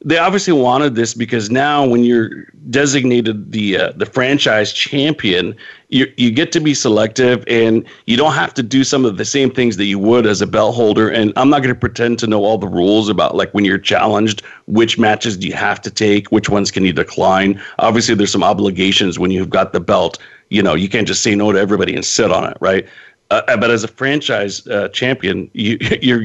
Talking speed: 220 wpm